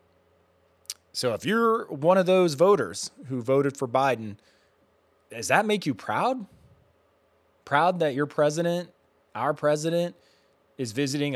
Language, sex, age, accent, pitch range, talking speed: English, male, 20-39, American, 130-155 Hz, 125 wpm